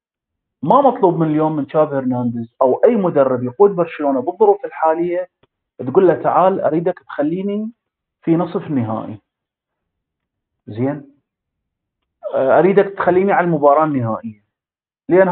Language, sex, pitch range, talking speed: Arabic, male, 130-205 Hz, 115 wpm